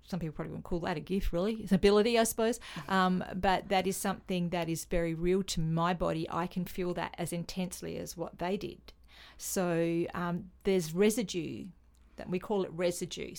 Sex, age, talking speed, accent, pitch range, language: female, 40-59, 200 wpm, Australian, 170-195 Hz, English